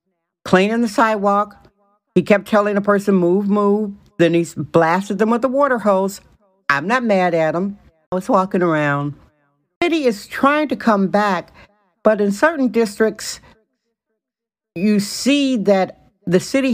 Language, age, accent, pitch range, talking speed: English, 60-79, American, 170-215 Hz, 155 wpm